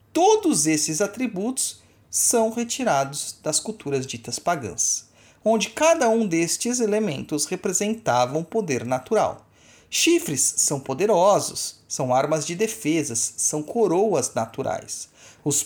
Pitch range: 140-220 Hz